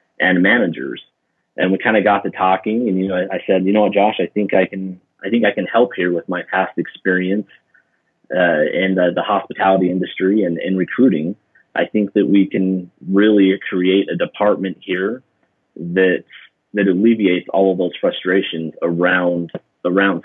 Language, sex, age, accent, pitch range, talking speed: English, male, 30-49, American, 90-105 Hz, 175 wpm